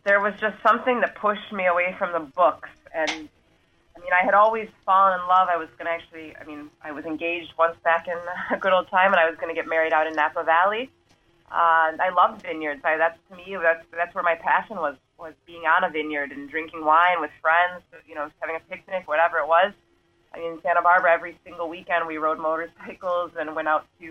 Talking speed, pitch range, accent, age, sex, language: 235 wpm, 155-180 Hz, American, 30-49, female, English